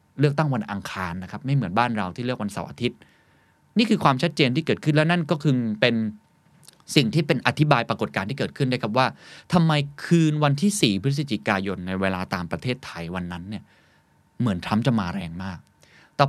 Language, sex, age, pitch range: Thai, male, 20-39, 100-150 Hz